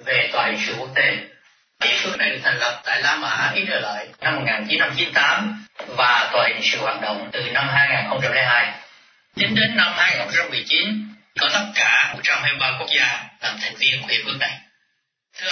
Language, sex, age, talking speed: Vietnamese, male, 30-49, 180 wpm